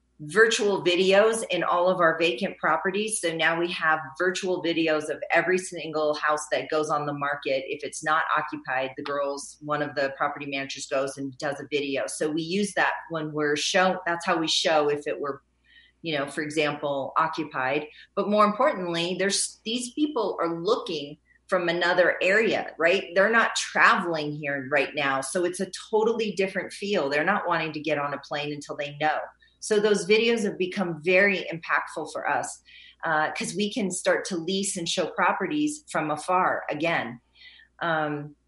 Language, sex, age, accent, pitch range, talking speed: English, female, 40-59, American, 145-190 Hz, 180 wpm